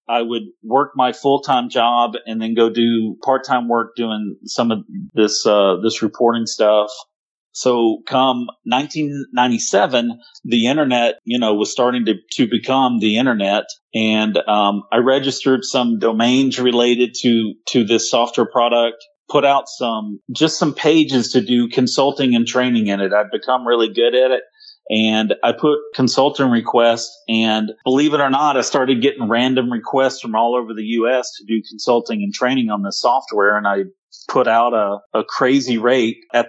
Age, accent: 40-59, American